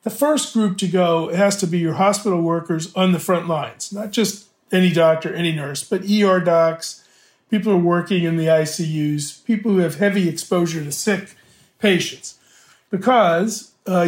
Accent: American